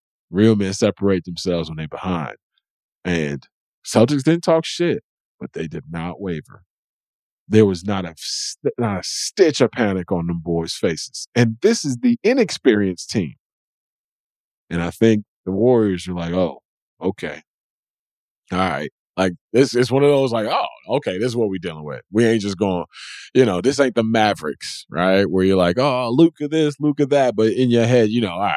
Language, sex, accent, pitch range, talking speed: English, male, American, 85-120 Hz, 185 wpm